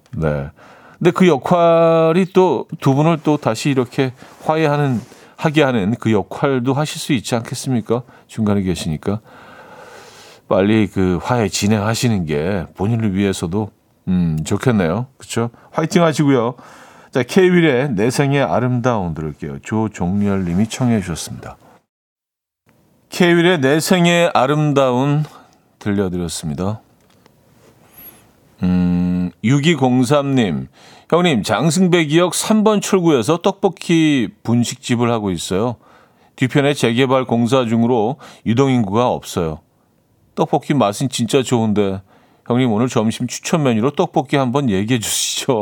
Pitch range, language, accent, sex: 100-145 Hz, Korean, native, male